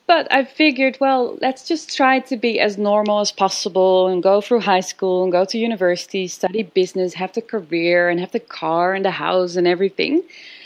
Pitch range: 185-250 Hz